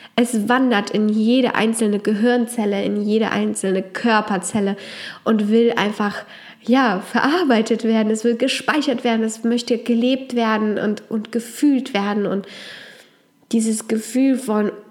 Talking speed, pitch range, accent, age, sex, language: 125 wpm, 205-245 Hz, German, 20-39, female, German